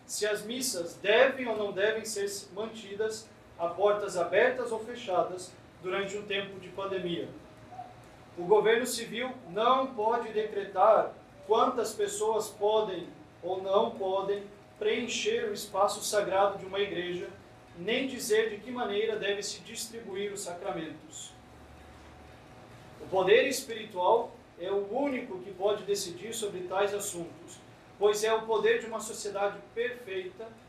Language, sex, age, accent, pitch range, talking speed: Portuguese, male, 40-59, Brazilian, 195-225 Hz, 130 wpm